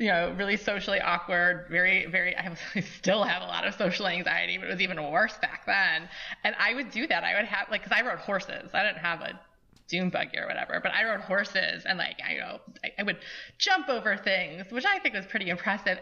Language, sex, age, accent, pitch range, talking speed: English, female, 20-39, American, 175-220 Hz, 245 wpm